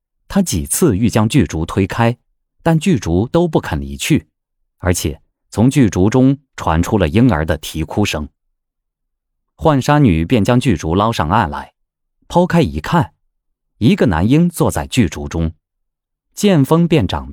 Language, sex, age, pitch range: Chinese, male, 30-49, 85-130 Hz